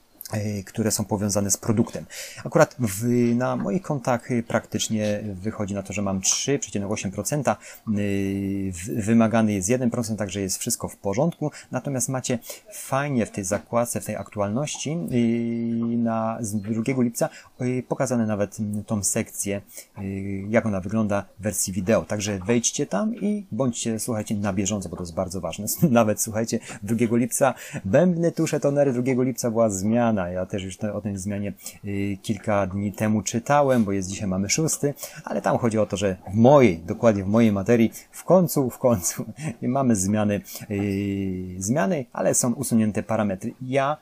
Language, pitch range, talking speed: Polish, 100-120 Hz, 150 wpm